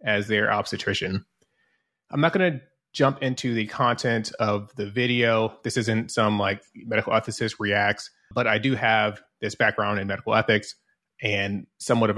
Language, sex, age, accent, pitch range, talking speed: English, male, 30-49, American, 105-125 Hz, 165 wpm